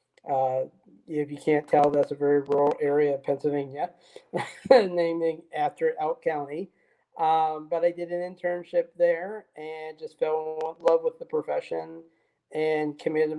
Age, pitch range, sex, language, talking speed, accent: 40-59, 145-165 Hz, male, English, 150 wpm, American